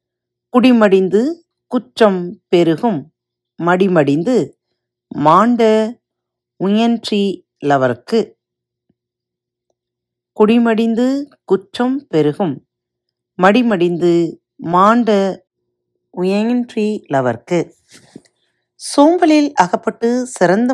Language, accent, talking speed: Tamil, native, 45 wpm